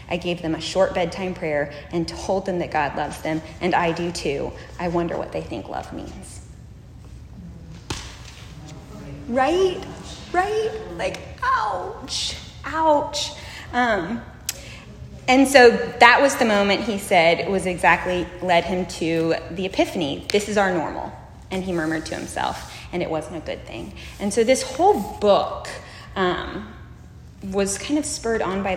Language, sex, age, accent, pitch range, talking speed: English, female, 20-39, American, 170-225 Hz, 150 wpm